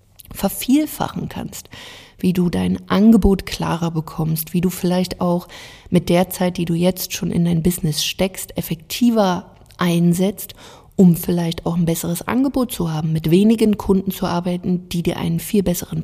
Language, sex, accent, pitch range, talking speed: German, female, German, 125-190 Hz, 160 wpm